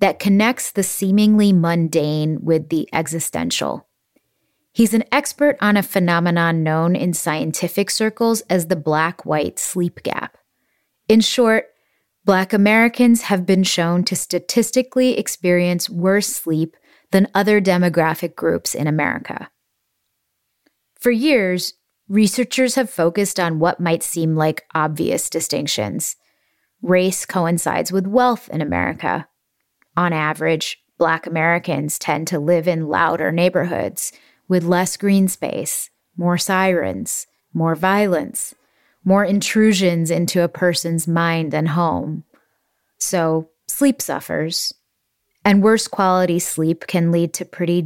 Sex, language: female, English